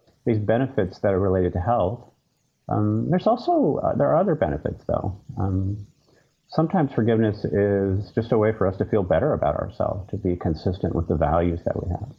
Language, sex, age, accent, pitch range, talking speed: English, male, 30-49, American, 80-100 Hz, 190 wpm